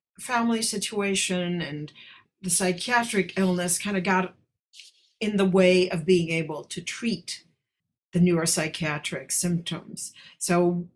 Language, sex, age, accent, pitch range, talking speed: English, female, 50-69, American, 160-185 Hz, 115 wpm